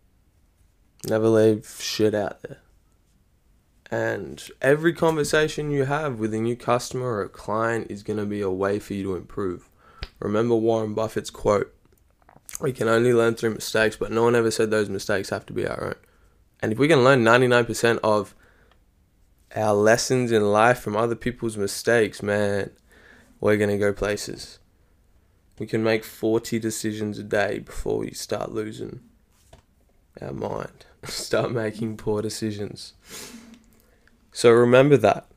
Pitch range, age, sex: 100-115 Hz, 10-29, male